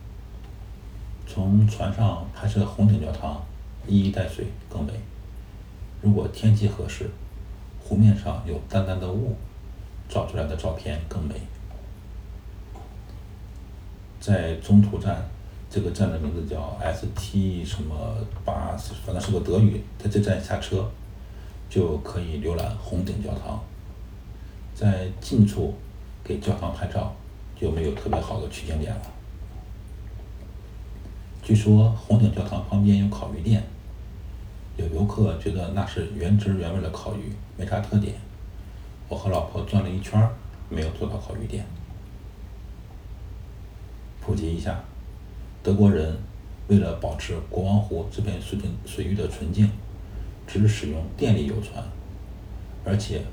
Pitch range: 95-105 Hz